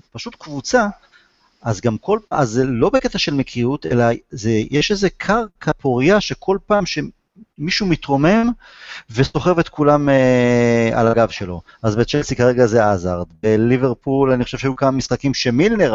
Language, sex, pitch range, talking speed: Hebrew, male, 120-160 Hz, 155 wpm